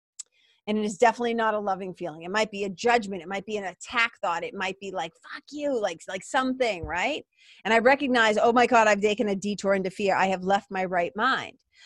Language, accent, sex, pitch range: English, American, female, 210-275 Hz